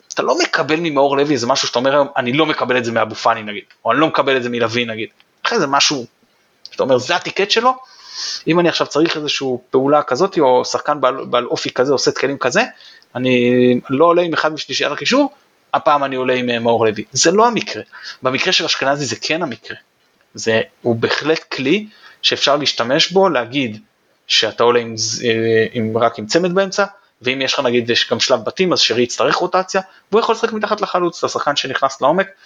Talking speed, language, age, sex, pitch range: 205 wpm, Hebrew, 20-39, male, 120-160 Hz